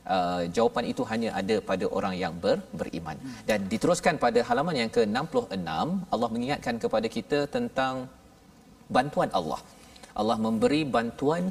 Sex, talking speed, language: male, 135 wpm, Malayalam